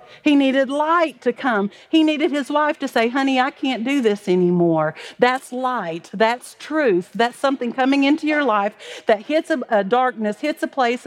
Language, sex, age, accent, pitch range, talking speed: English, female, 50-69, American, 215-280 Hz, 190 wpm